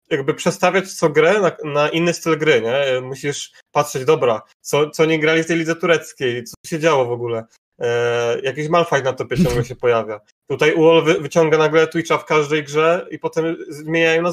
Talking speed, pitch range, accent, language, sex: 195 wpm, 145-175 Hz, native, Polish, male